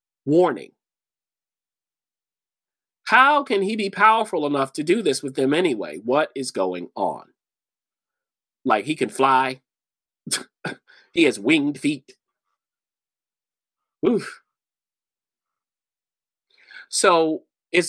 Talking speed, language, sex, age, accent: 95 wpm, English, male, 30-49, American